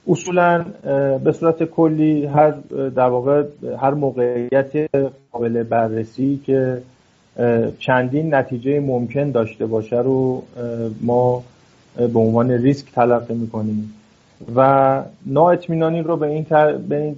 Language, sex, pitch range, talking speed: Persian, male, 120-145 Hz, 100 wpm